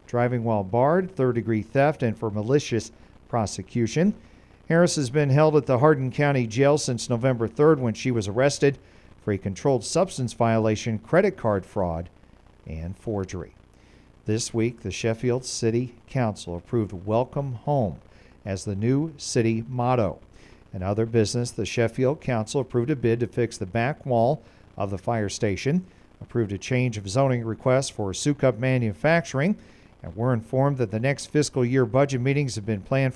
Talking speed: 160 wpm